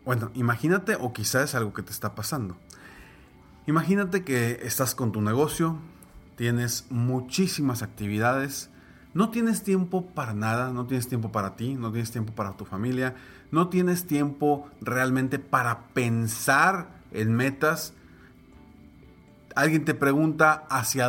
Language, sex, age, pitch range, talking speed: Spanish, male, 40-59, 120-175 Hz, 135 wpm